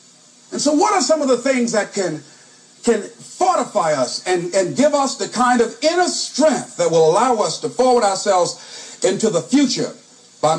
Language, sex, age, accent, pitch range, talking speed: English, male, 50-69, American, 235-300 Hz, 185 wpm